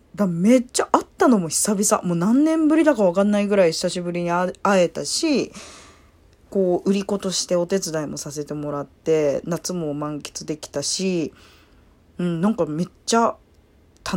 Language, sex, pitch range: Japanese, female, 165-260 Hz